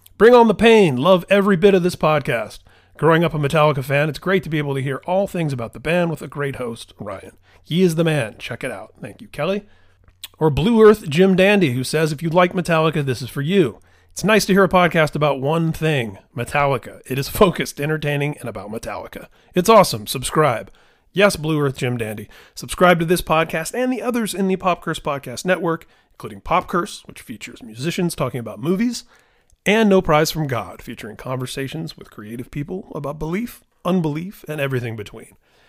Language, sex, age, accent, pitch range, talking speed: English, male, 30-49, American, 130-180 Hz, 200 wpm